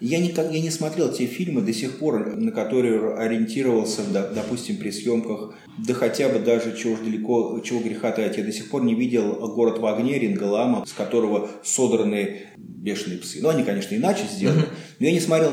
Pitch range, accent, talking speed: 115-165 Hz, native, 195 wpm